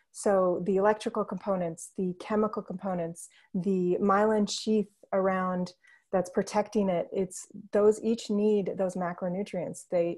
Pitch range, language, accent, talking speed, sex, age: 180-210 Hz, English, American, 125 wpm, female, 30-49